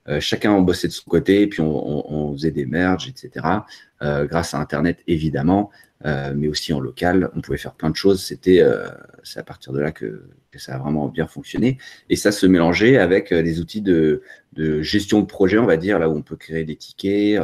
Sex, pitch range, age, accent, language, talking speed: male, 80-110 Hz, 30-49, French, French, 225 wpm